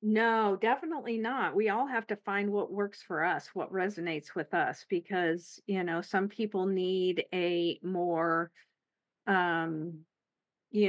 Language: English